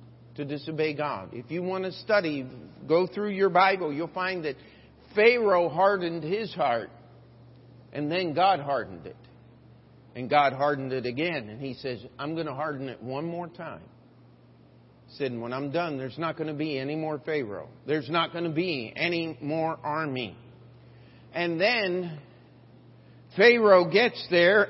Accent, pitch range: American, 135-185 Hz